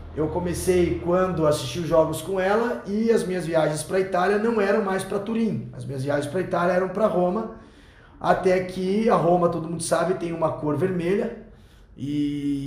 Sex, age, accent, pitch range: male, 20-39, Brazilian, 145-185 Hz